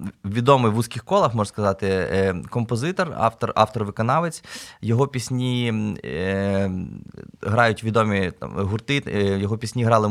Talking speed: 120 wpm